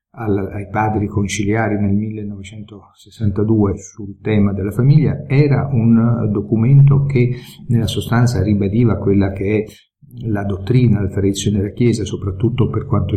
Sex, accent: male, native